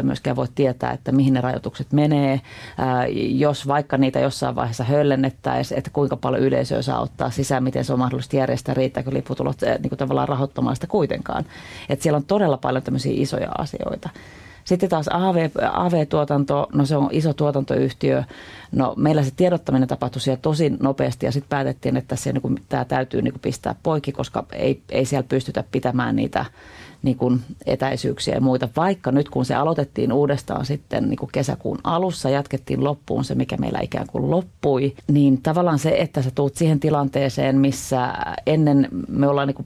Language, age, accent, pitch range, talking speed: Finnish, 30-49, native, 130-145 Hz, 170 wpm